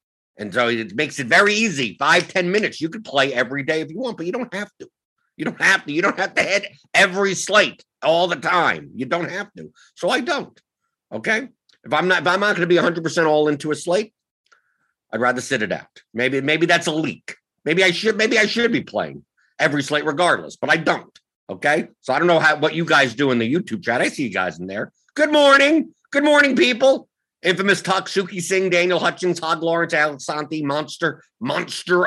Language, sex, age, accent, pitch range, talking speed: English, male, 50-69, American, 140-210 Hz, 220 wpm